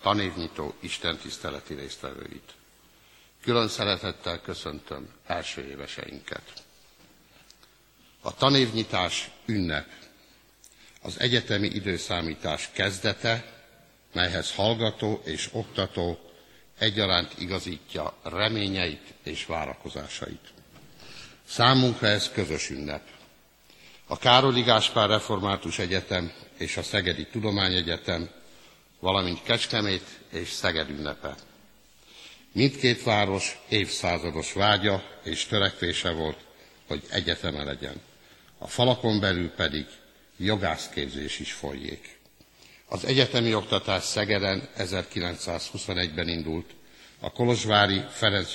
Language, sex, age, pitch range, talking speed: Hungarian, male, 60-79, 85-105 Hz, 85 wpm